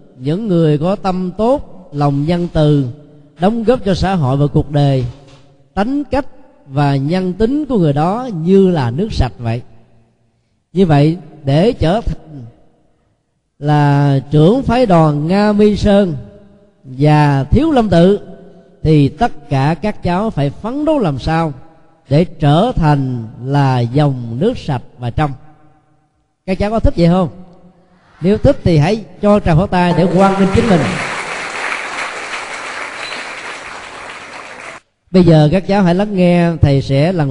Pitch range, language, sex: 140-195 Hz, Vietnamese, male